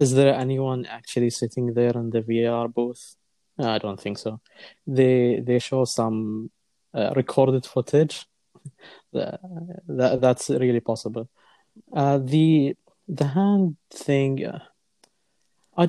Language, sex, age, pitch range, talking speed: Arabic, male, 30-49, 120-155 Hz, 120 wpm